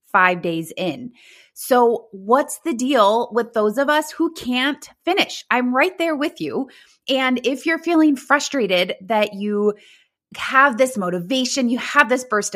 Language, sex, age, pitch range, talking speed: English, female, 20-39, 190-260 Hz, 160 wpm